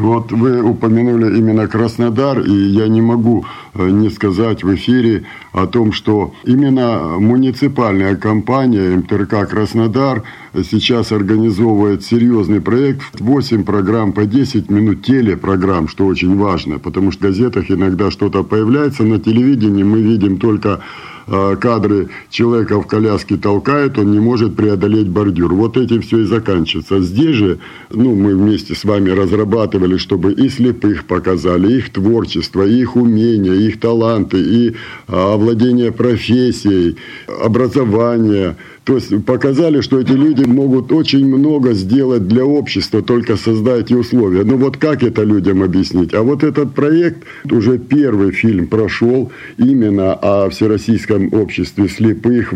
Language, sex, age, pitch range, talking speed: Russian, male, 60-79, 100-120 Hz, 135 wpm